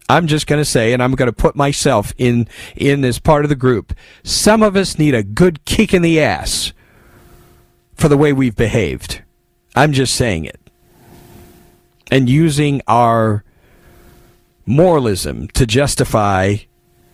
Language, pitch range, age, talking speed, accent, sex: English, 105-145 Hz, 40-59, 150 wpm, American, male